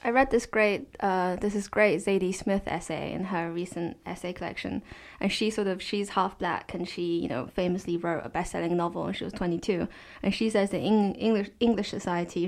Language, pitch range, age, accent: English, 170-195 Hz, 20-39, British